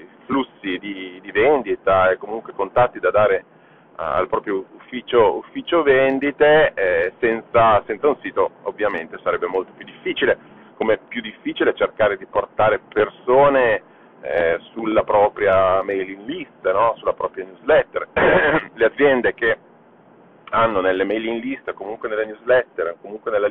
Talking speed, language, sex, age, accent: 140 wpm, Italian, male, 40-59, native